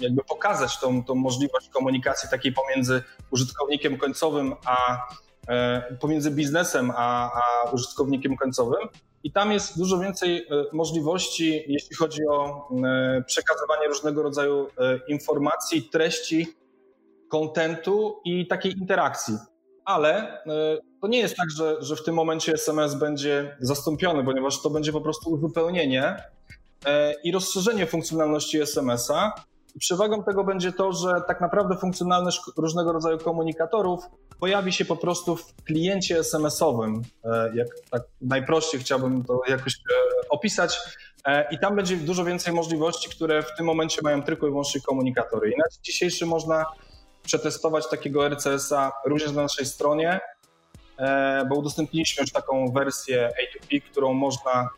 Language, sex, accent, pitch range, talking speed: Polish, male, native, 135-175 Hz, 125 wpm